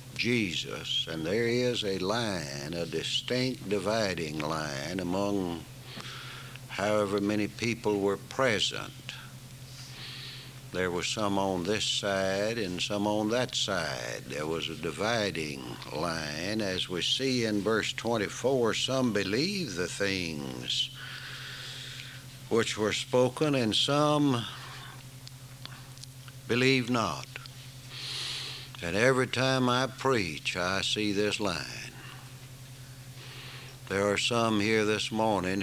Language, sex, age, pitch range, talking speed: English, male, 60-79, 95-130 Hz, 110 wpm